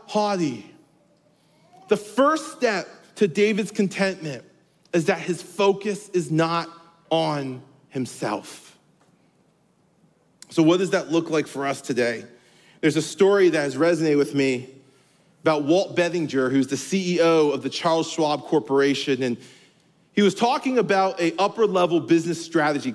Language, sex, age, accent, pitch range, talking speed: English, male, 40-59, American, 150-195 Hz, 140 wpm